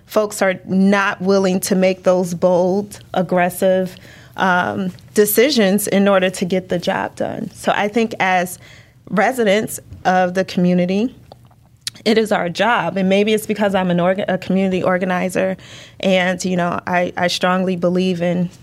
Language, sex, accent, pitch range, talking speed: English, female, American, 180-210 Hz, 155 wpm